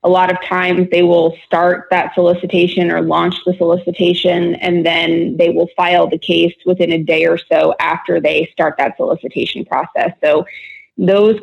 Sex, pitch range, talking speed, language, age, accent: female, 165-185 Hz, 175 wpm, English, 20-39, American